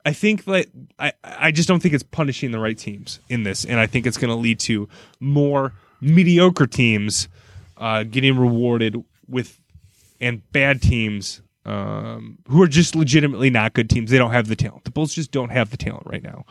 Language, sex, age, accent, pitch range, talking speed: English, male, 20-39, American, 110-140 Hz, 200 wpm